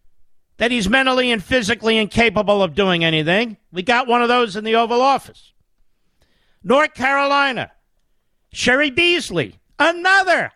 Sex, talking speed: male, 130 wpm